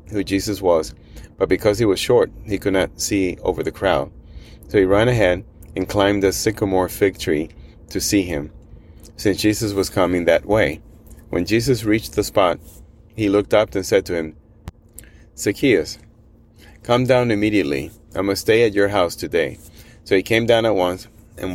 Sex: male